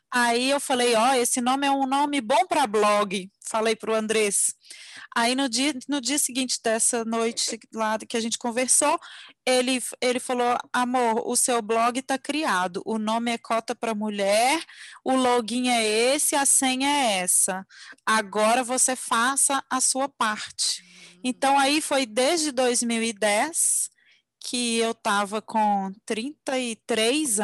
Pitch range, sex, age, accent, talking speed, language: 210-255 Hz, female, 20-39, Brazilian, 150 wpm, Portuguese